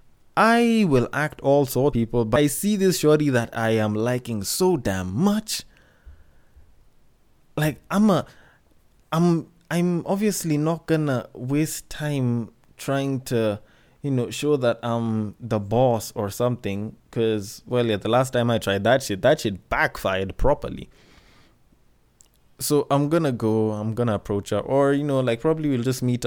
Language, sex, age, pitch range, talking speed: English, male, 20-39, 105-135 Hz, 160 wpm